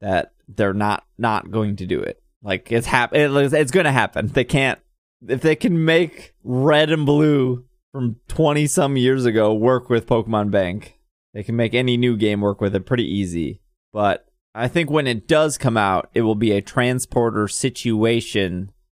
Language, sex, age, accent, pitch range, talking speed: English, male, 20-39, American, 110-165 Hz, 180 wpm